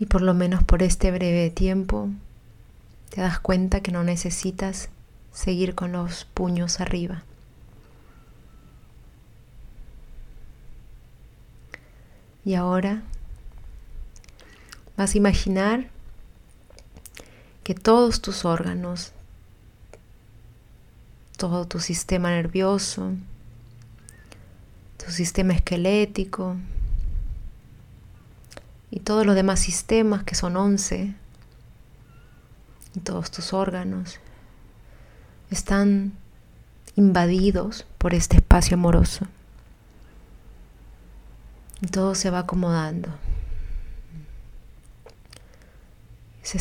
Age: 30-49